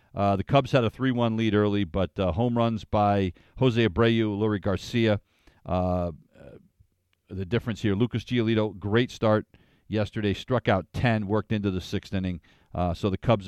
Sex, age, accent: male, 40-59, American